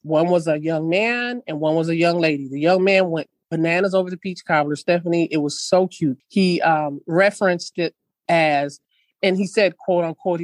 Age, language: 30-49, English